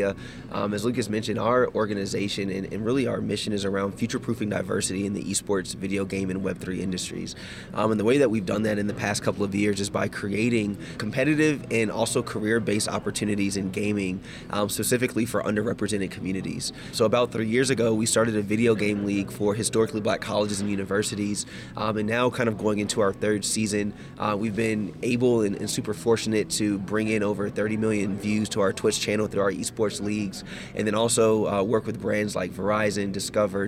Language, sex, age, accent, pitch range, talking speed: English, male, 20-39, American, 100-110 Hz, 200 wpm